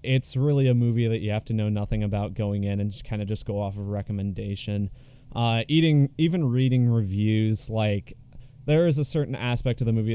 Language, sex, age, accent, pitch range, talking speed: English, male, 20-39, American, 100-125 Hz, 215 wpm